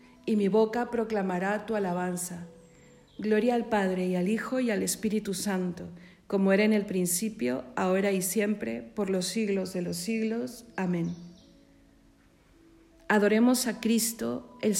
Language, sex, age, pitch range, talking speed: Spanish, female, 50-69, 185-225 Hz, 140 wpm